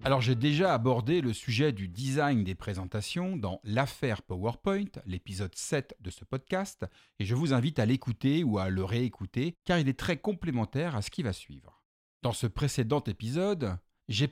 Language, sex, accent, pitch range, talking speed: French, male, French, 100-145 Hz, 180 wpm